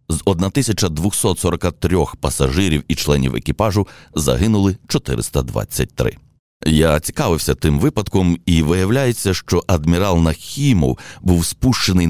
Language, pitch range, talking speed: Ukrainian, 75-95 Hz, 95 wpm